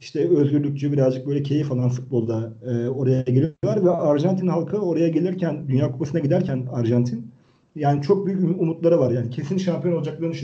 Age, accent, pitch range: 40-59, native, 130-170 Hz